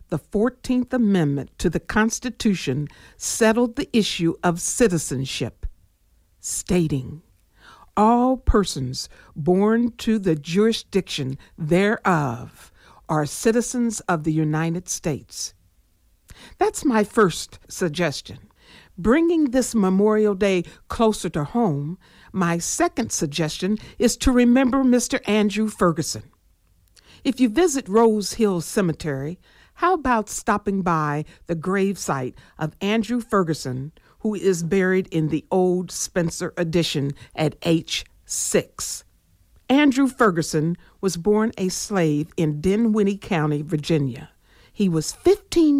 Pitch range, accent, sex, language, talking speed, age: 155-220 Hz, American, female, English, 110 wpm, 60-79